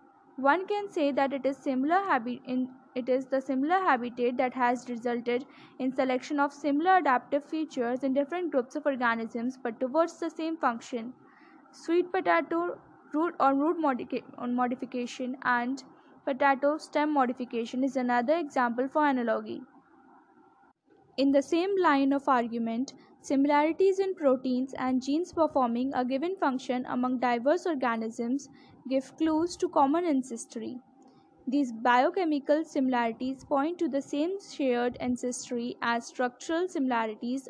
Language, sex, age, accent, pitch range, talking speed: English, female, 10-29, Indian, 250-295 Hz, 135 wpm